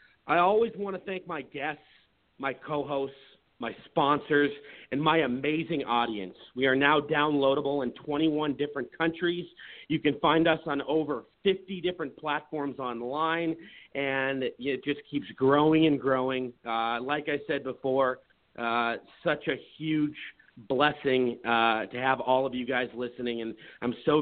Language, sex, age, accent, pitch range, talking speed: English, male, 40-59, American, 120-160 Hz, 150 wpm